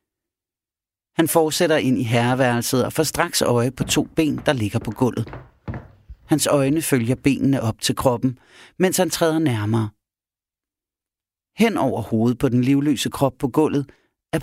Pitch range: 120-150 Hz